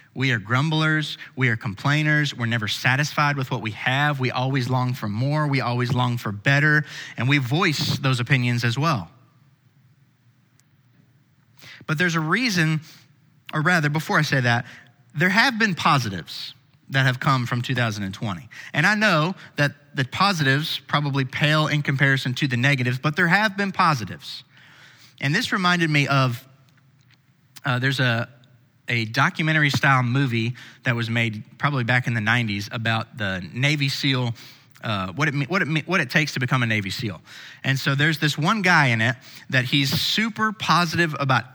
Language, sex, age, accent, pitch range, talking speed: English, male, 30-49, American, 125-150 Hz, 170 wpm